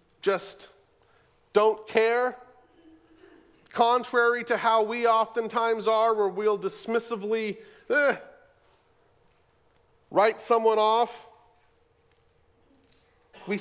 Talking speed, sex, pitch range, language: 75 wpm, male, 180-250 Hz, English